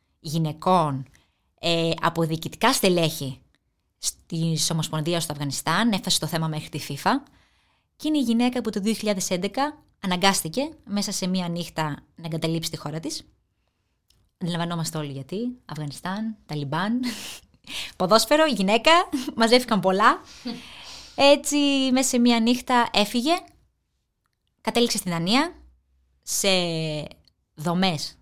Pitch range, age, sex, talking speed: 160-230 Hz, 20-39, female, 110 wpm